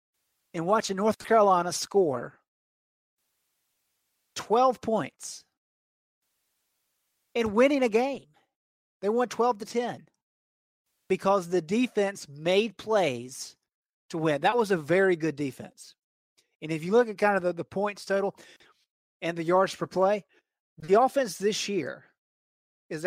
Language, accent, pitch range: English, American, 150-200 Hz